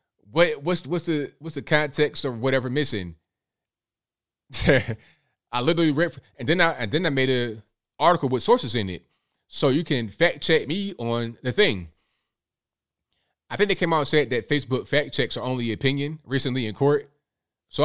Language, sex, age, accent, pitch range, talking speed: English, male, 20-39, American, 110-145 Hz, 180 wpm